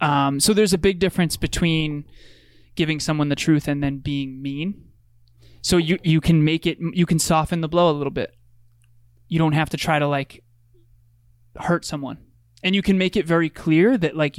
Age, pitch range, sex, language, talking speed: 20-39, 140-165 Hz, male, English, 195 wpm